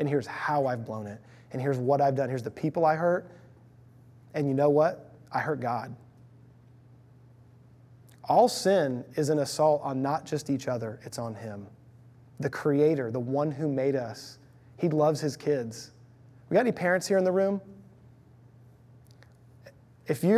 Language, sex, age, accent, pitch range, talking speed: English, male, 20-39, American, 125-195 Hz, 165 wpm